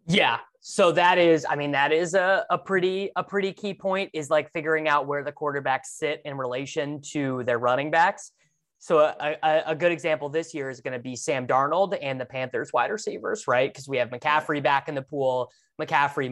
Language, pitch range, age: English, 130-155 Hz, 20-39